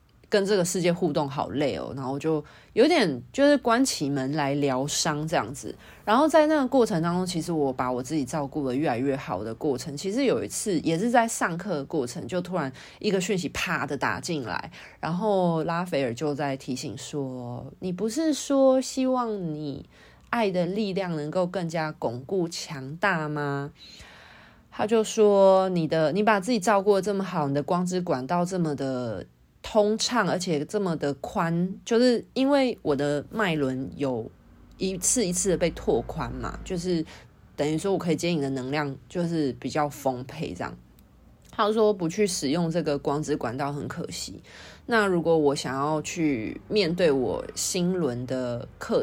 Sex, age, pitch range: female, 20-39, 145-200 Hz